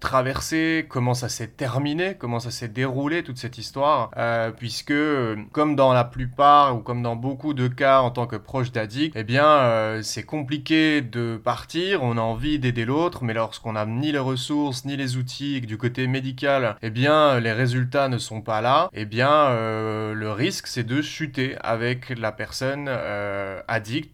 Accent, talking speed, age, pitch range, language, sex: French, 185 wpm, 20-39, 115-140 Hz, French, male